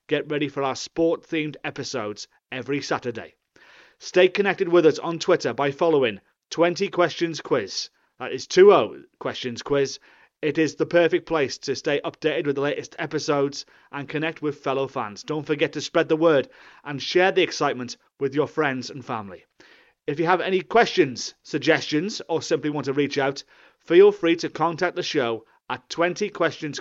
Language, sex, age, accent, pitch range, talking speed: English, male, 30-49, British, 135-165 Hz, 175 wpm